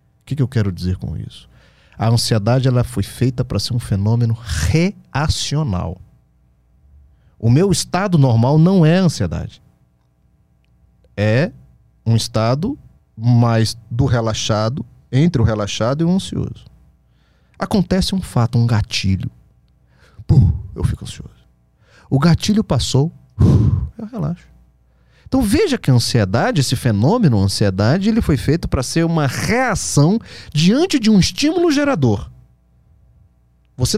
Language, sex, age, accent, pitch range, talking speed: Portuguese, male, 40-59, Brazilian, 105-160 Hz, 130 wpm